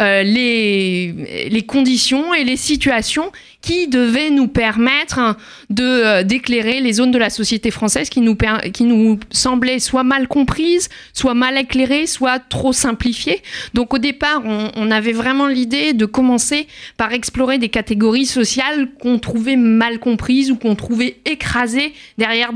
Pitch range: 220-260 Hz